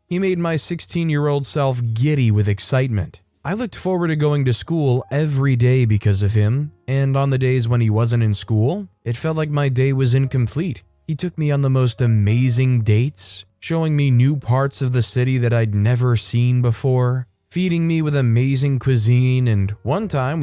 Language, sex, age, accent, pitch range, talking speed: English, male, 20-39, American, 115-145 Hz, 195 wpm